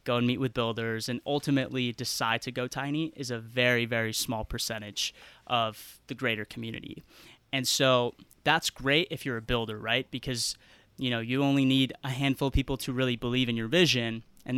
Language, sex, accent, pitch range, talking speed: English, male, American, 115-135 Hz, 195 wpm